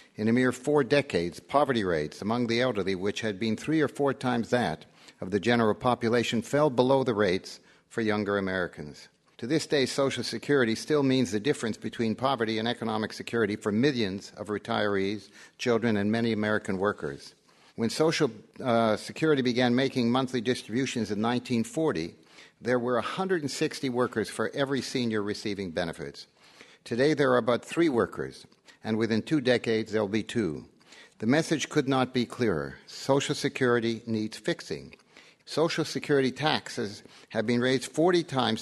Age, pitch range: 60-79, 110-135 Hz